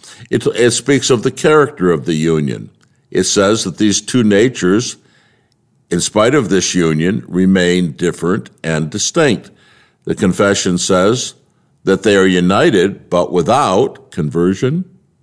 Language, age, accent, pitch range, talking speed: English, 60-79, American, 85-120 Hz, 135 wpm